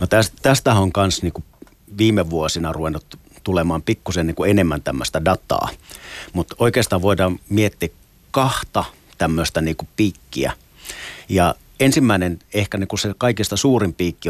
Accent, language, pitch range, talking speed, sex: native, Finnish, 85-105 Hz, 120 wpm, male